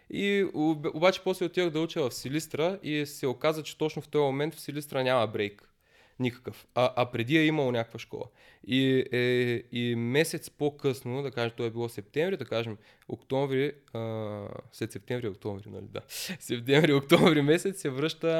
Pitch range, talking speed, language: 120-145 Hz, 185 wpm, Bulgarian